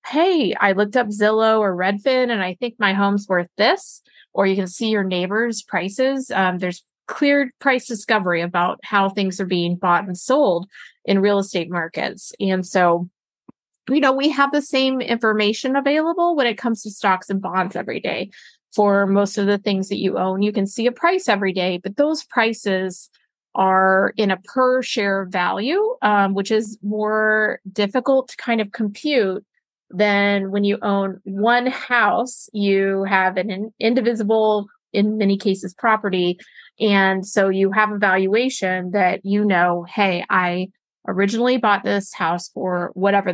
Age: 30-49